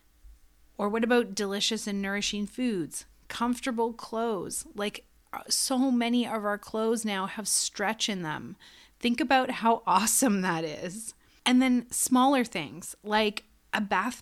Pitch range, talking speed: 175-230 Hz, 140 wpm